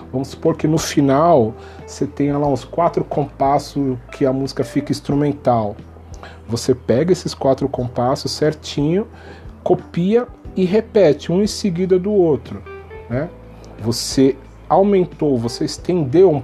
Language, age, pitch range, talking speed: Portuguese, 40-59, 115-145 Hz, 130 wpm